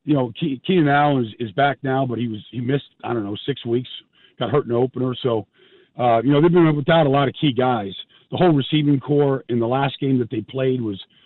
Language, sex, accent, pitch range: English, male, American, 125-160 Hz